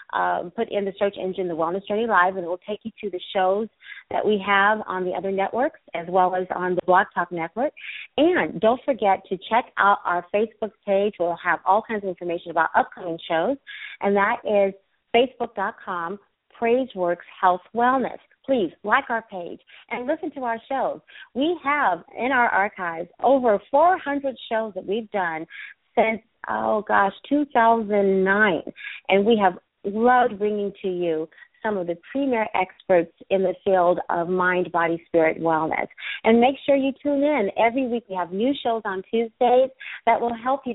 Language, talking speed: English, 175 wpm